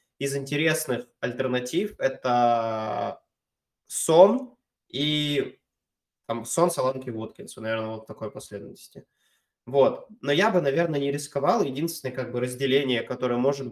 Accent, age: native, 20-39